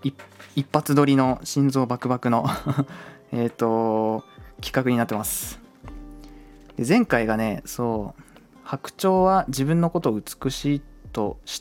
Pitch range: 100-135 Hz